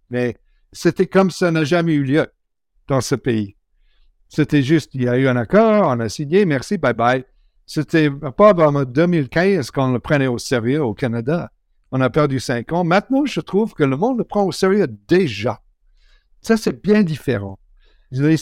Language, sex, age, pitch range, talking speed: French, male, 60-79, 130-190 Hz, 185 wpm